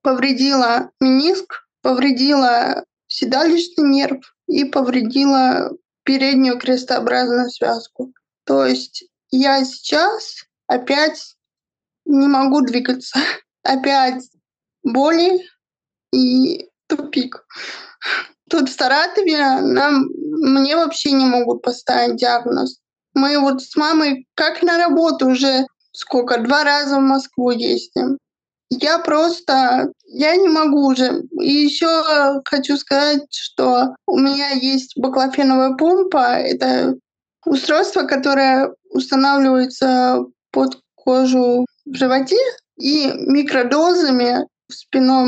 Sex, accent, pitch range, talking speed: female, native, 255-310 Hz, 95 wpm